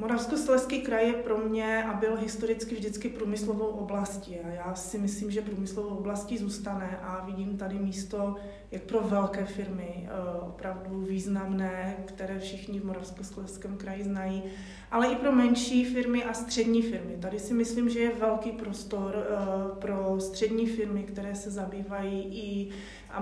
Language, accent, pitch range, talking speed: Czech, native, 195-220 Hz, 150 wpm